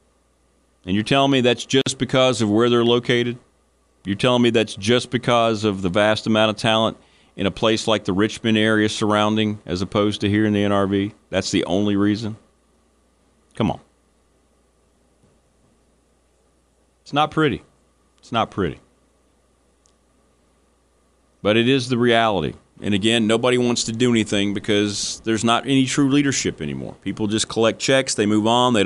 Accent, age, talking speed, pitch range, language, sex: American, 40-59, 160 wpm, 95-120 Hz, English, male